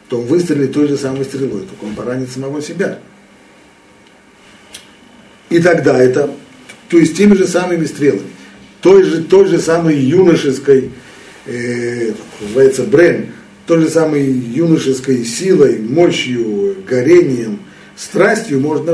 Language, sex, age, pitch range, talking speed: Russian, male, 50-69, 110-160 Hz, 125 wpm